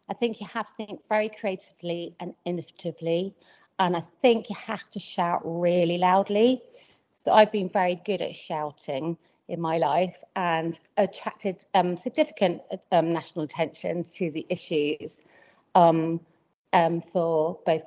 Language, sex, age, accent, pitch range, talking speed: English, female, 40-59, British, 165-205 Hz, 145 wpm